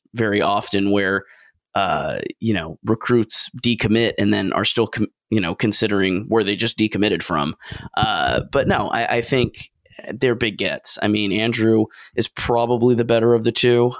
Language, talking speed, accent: English, 165 wpm, American